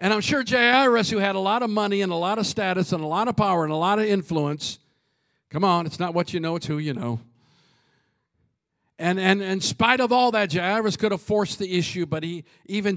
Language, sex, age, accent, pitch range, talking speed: English, male, 50-69, American, 165-205 Hz, 240 wpm